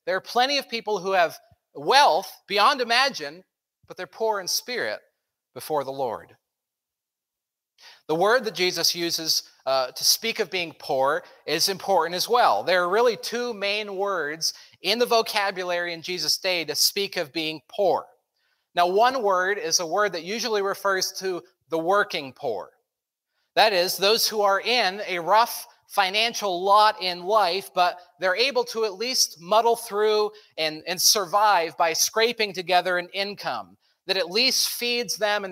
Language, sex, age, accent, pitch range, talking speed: English, male, 40-59, American, 170-215 Hz, 165 wpm